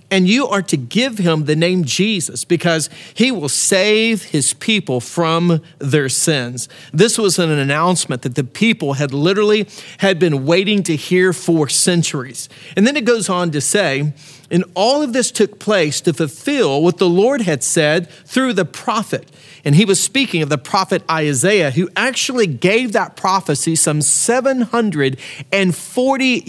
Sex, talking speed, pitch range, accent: male, 165 wpm, 150-200 Hz, American